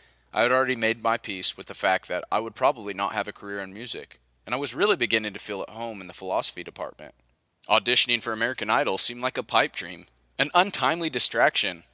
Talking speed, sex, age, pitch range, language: 220 wpm, male, 30-49, 80-120 Hz, English